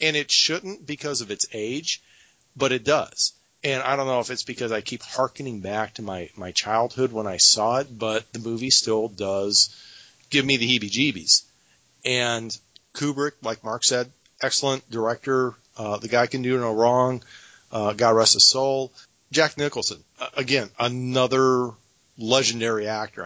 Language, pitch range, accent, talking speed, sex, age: English, 110-135 Hz, American, 165 wpm, male, 40-59